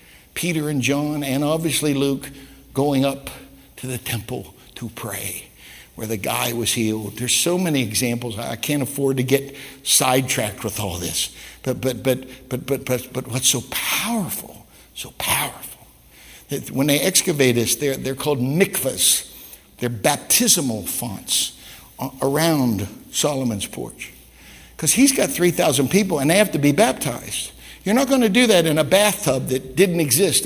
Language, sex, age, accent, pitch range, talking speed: English, male, 60-79, American, 115-150 Hz, 160 wpm